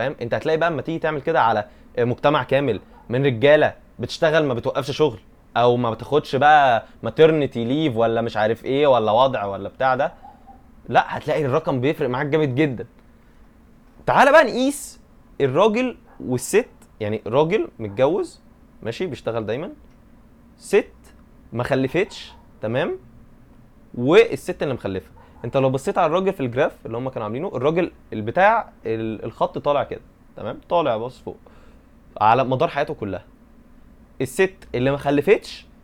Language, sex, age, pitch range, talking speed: Arabic, male, 20-39, 115-180 Hz, 140 wpm